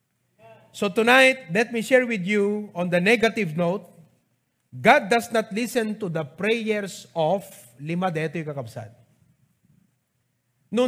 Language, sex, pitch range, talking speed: English, male, 145-235 Hz, 130 wpm